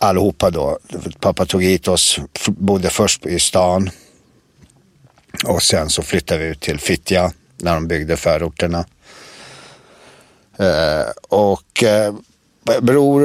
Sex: male